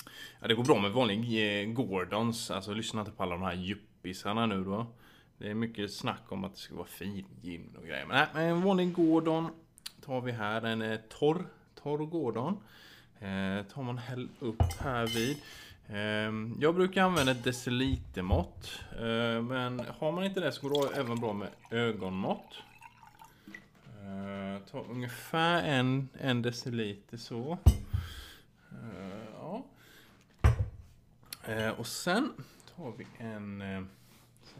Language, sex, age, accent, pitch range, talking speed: Swedish, male, 20-39, Norwegian, 100-140 Hz, 140 wpm